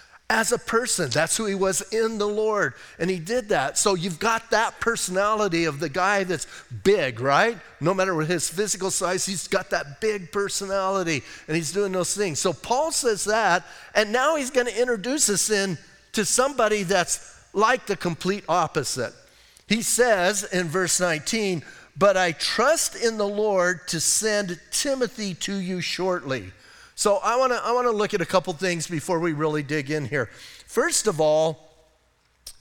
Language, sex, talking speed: English, male, 175 wpm